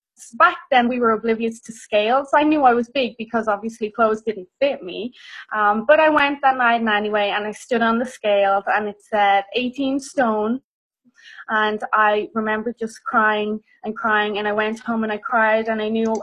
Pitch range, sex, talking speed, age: 220-260 Hz, female, 200 wpm, 20-39